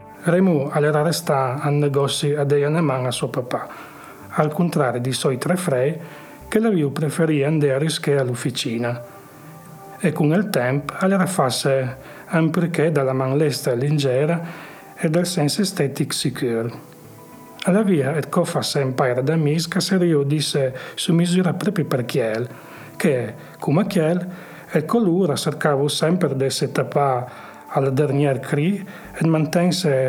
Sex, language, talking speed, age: male, Italian, 145 wpm, 40-59